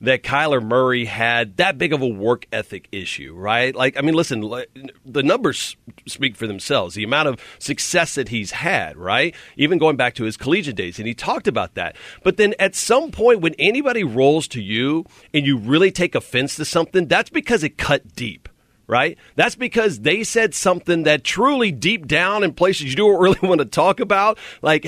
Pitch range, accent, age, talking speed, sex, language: 140-220 Hz, American, 40-59, 200 wpm, male, English